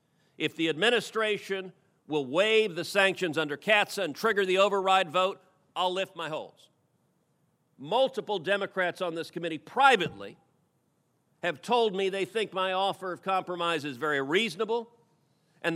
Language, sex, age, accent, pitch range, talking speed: English, male, 50-69, American, 160-205 Hz, 140 wpm